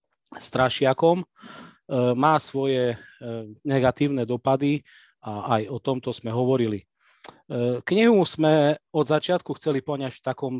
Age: 30-49